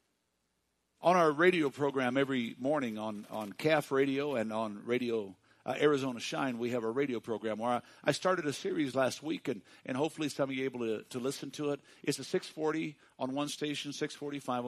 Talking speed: 200 wpm